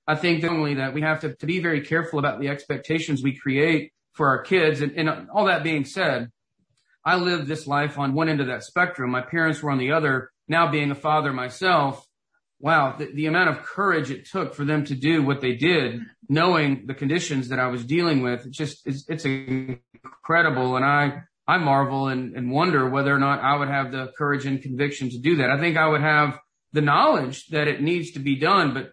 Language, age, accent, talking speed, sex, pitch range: English, 40-59, American, 225 wpm, male, 130-160 Hz